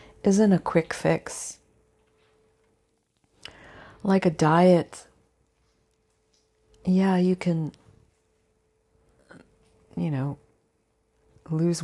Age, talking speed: 40-59, 65 wpm